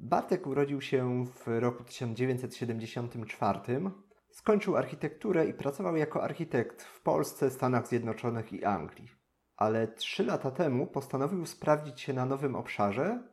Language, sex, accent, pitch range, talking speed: Polish, male, native, 120-170 Hz, 125 wpm